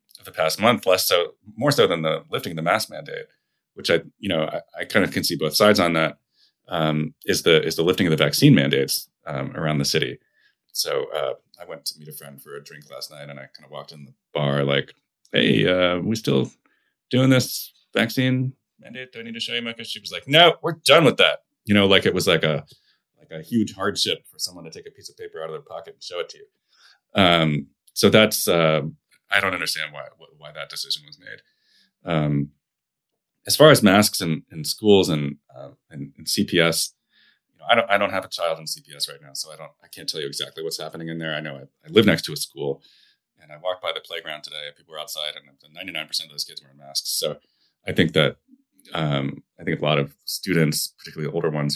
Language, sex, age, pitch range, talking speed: English, male, 30-49, 75-110 Hz, 245 wpm